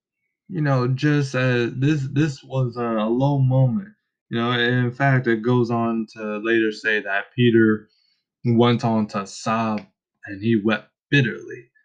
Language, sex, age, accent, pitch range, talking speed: English, male, 20-39, American, 115-140 Hz, 155 wpm